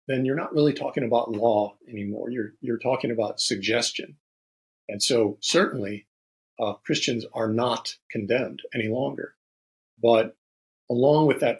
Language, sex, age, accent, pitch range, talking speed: English, male, 40-59, American, 105-130 Hz, 140 wpm